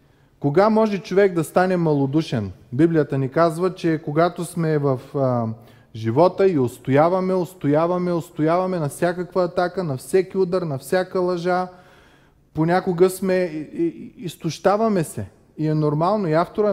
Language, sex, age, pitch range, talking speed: Bulgarian, male, 20-39, 145-190 Hz, 140 wpm